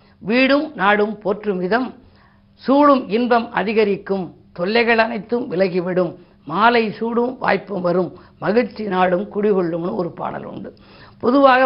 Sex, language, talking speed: female, Tamil, 110 wpm